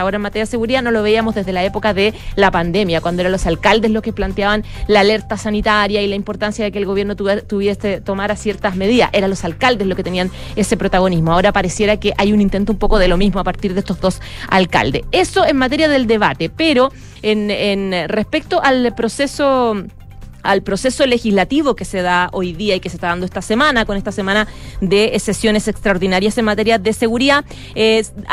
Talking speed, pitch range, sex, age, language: 210 wpm, 200-245 Hz, female, 30-49, Spanish